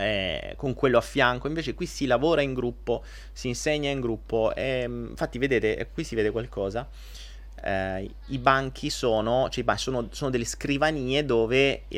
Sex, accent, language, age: male, native, Italian, 30-49